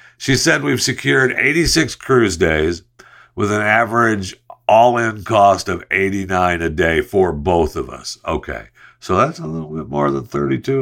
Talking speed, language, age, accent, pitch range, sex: 160 wpm, English, 60-79, American, 95-125 Hz, male